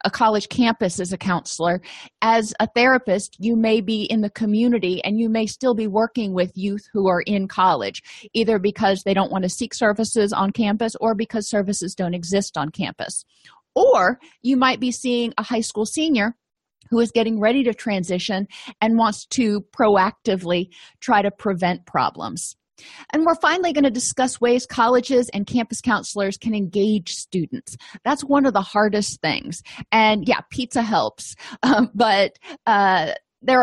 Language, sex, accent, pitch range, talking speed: English, female, American, 190-235 Hz, 170 wpm